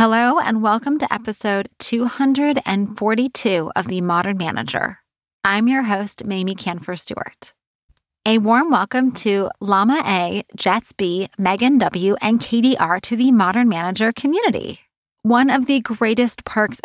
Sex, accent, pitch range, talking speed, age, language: female, American, 195-250 Hz, 135 wpm, 20-39, English